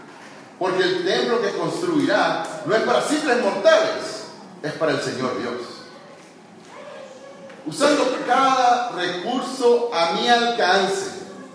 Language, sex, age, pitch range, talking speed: Spanish, male, 40-59, 190-260 Hz, 110 wpm